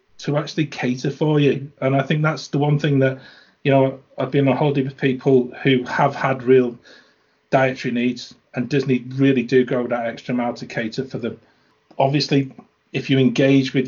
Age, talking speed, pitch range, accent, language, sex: 40-59, 190 wpm, 120-135 Hz, British, English, male